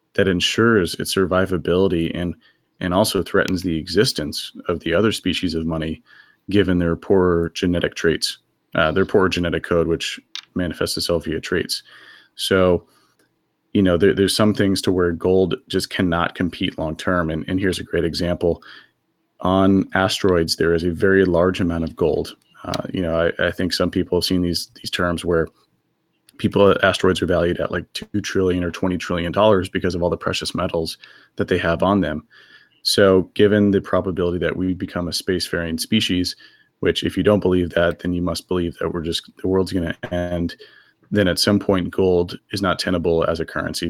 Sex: male